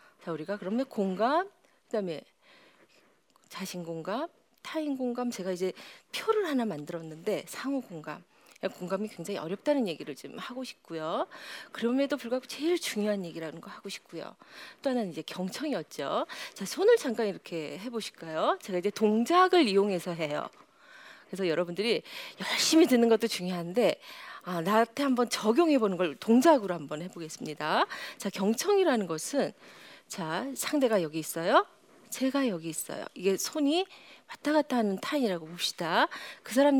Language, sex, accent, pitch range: Korean, female, native, 190-295 Hz